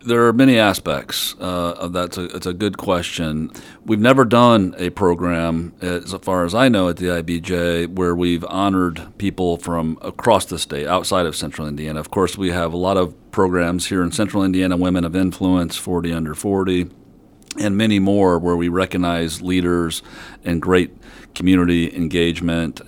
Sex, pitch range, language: male, 85-95 Hz, English